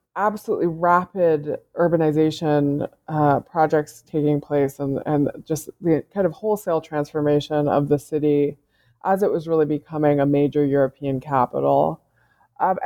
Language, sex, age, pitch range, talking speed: English, female, 20-39, 145-180 Hz, 130 wpm